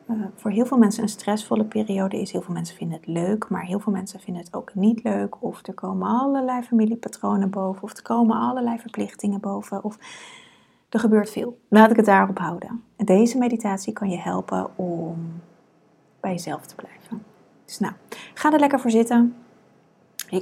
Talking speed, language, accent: 185 wpm, Dutch, Dutch